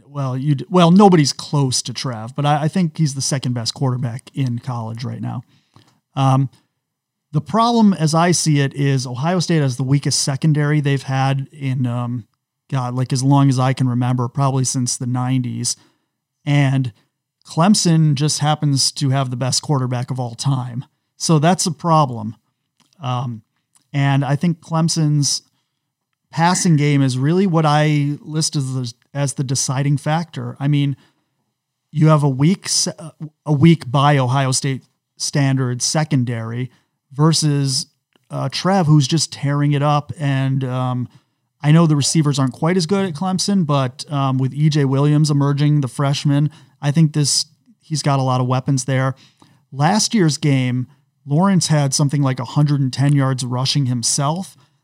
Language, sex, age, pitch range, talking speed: English, male, 40-59, 130-155 Hz, 160 wpm